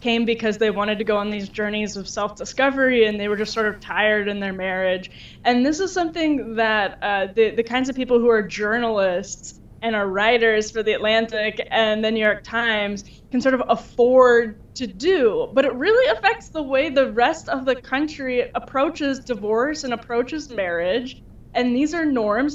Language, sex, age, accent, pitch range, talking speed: English, female, 10-29, American, 215-255 Hz, 190 wpm